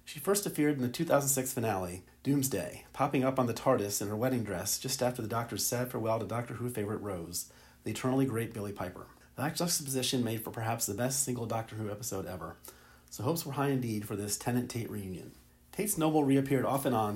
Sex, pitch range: male, 100-130 Hz